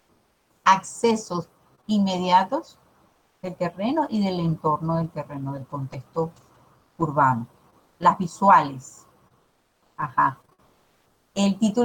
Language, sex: Spanish, female